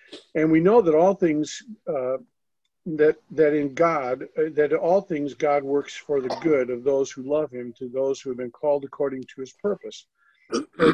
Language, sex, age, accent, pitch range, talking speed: English, male, 50-69, American, 135-175 Hz, 195 wpm